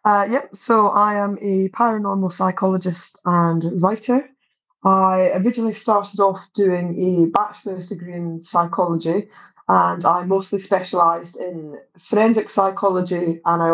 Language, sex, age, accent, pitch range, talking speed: English, female, 20-39, British, 175-205 Hz, 125 wpm